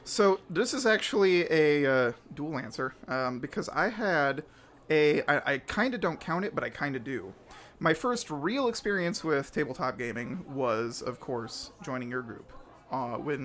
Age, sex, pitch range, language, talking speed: 30-49, male, 130-155 Hz, English, 170 wpm